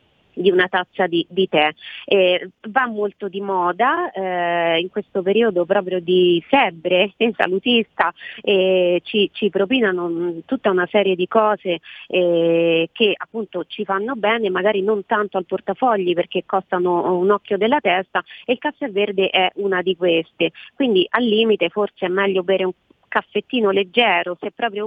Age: 30-49